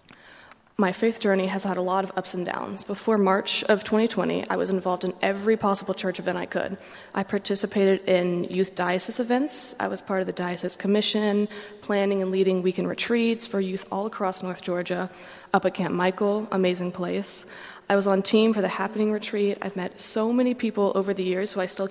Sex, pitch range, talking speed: female, 185-205 Hz, 205 wpm